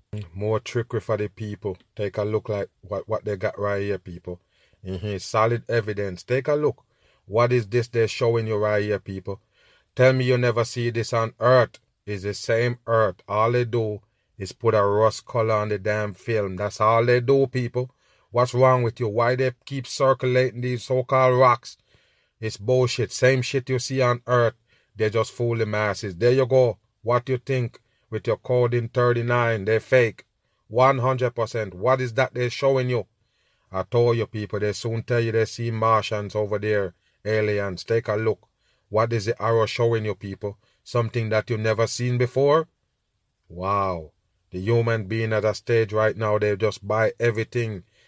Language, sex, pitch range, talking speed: English, male, 105-120 Hz, 185 wpm